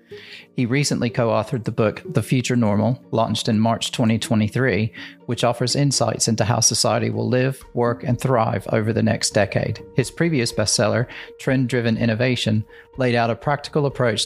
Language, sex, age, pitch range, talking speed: English, male, 40-59, 110-125 Hz, 155 wpm